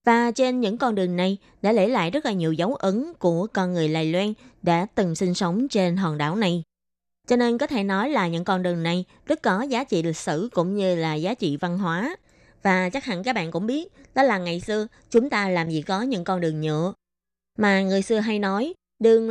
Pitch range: 175-230 Hz